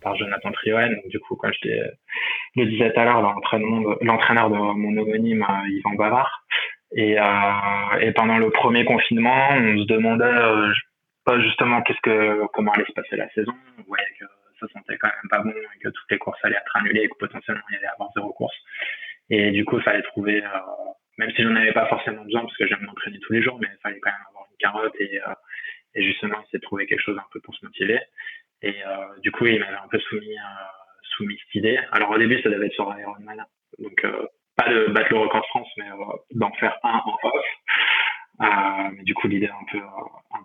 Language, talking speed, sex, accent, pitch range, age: French, 235 wpm, male, French, 100-125 Hz, 20-39